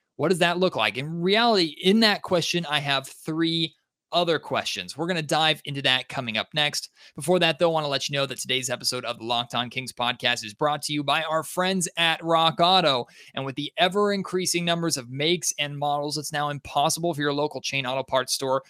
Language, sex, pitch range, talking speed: English, male, 145-185 Hz, 225 wpm